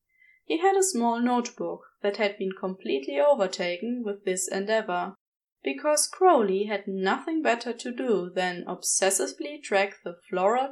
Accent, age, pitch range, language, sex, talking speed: German, 20-39, 190-300 Hz, English, female, 140 wpm